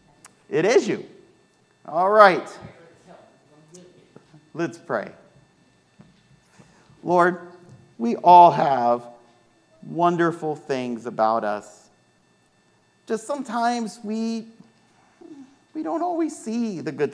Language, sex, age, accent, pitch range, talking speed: English, male, 50-69, American, 130-195 Hz, 85 wpm